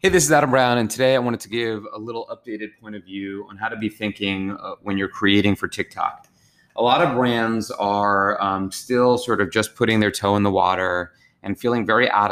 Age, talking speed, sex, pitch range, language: 20-39, 230 wpm, male, 100-115 Hz, English